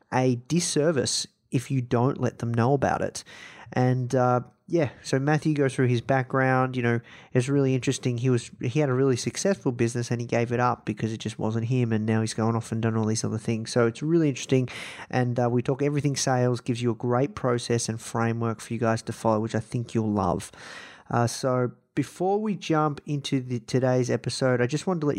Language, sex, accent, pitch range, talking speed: English, male, Australian, 115-130 Hz, 220 wpm